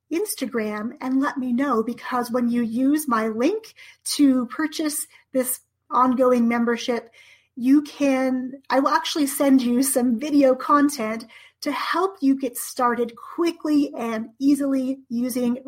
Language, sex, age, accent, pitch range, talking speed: English, female, 30-49, American, 235-290 Hz, 135 wpm